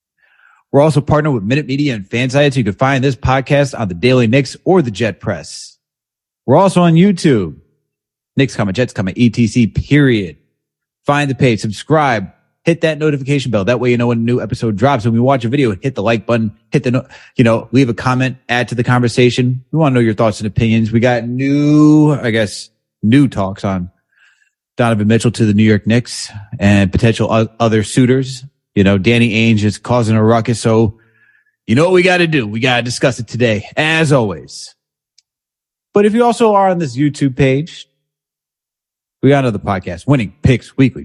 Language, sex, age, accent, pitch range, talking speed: English, male, 30-49, American, 110-140 Hz, 200 wpm